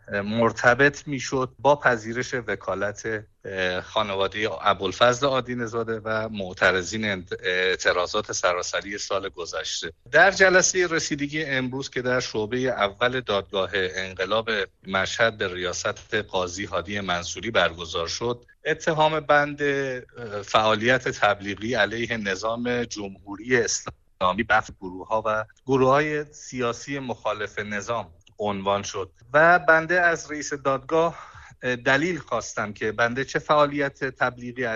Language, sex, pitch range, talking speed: Persian, male, 105-135 Hz, 105 wpm